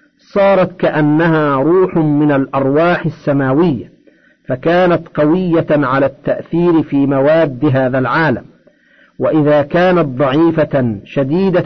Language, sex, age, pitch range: Arabic, male, 50-69, 145-175 Hz